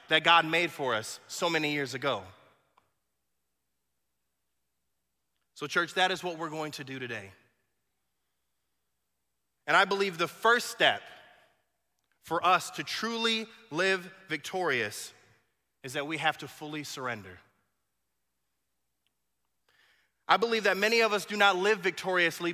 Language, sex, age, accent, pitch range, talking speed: English, male, 30-49, American, 150-205 Hz, 130 wpm